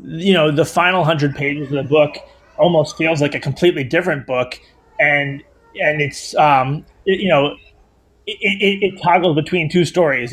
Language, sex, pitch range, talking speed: English, male, 135-165 Hz, 170 wpm